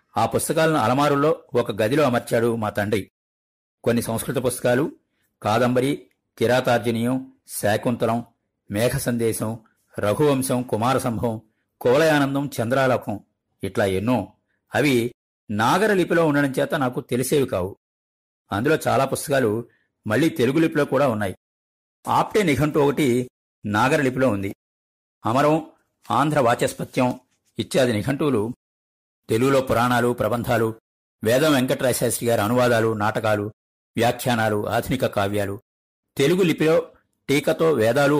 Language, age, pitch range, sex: Telugu, 50-69, 105-135 Hz, male